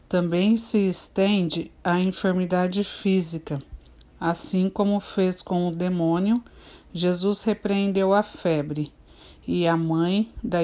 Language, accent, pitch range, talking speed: Portuguese, Brazilian, 165-195 Hz, 115 wpm